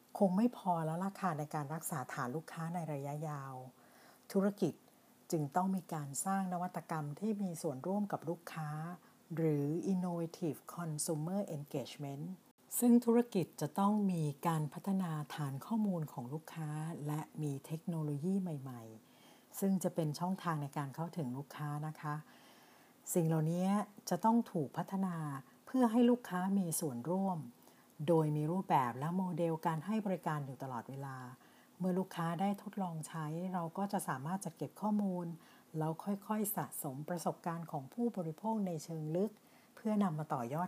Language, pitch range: Thai, 150-190 Hz